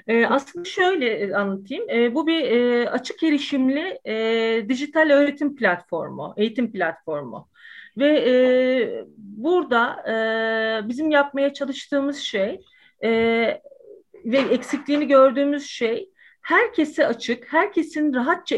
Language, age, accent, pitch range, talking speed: Turkish, 40-59, native, 225-295 Hz, 85 wpm